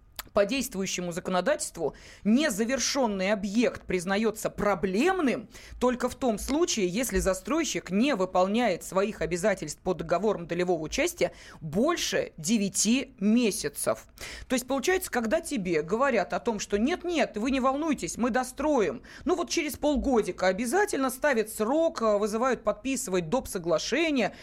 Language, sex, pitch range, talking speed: Russian, female, 190-265 Hz, 125 wpm